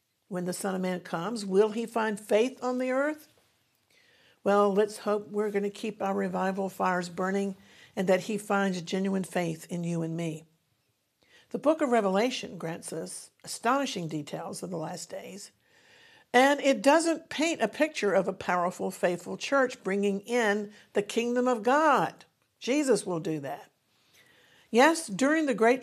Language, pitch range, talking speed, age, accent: English, 180-240 Hz, 165 wpm, 60-79, American